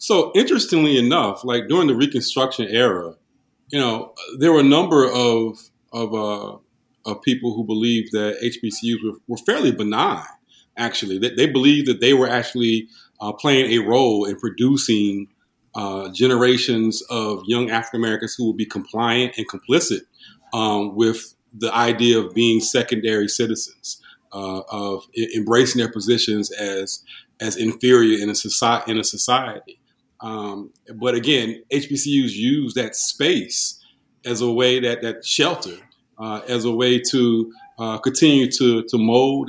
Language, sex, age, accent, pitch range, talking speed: English, male, 40-59, American, 110-130 Hz, 145 wpm